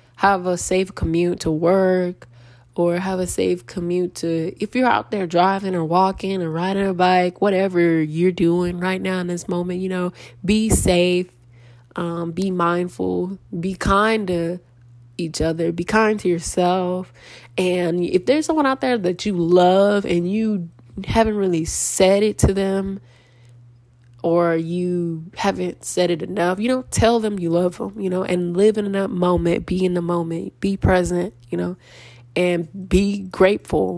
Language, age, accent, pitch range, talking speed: English, 20-39, American, 165-195 Hz, 170 wpm